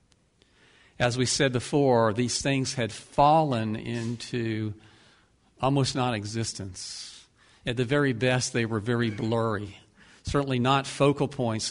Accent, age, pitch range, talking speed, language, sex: American, 50-69, 115-160 Hz, 120 wpm, English, male